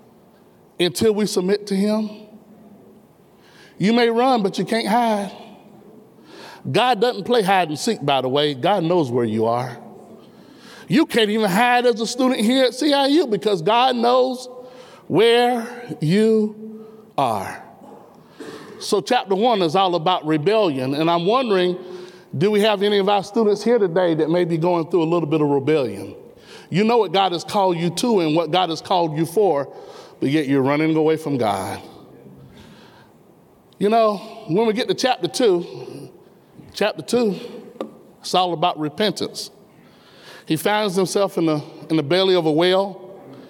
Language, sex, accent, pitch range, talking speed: English, male, American, 180-240 Hz, 160 wpm